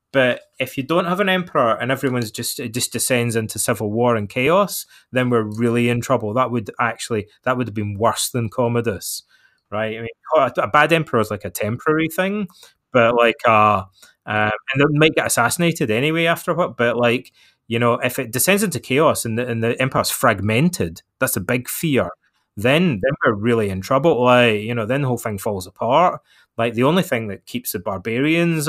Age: 20-39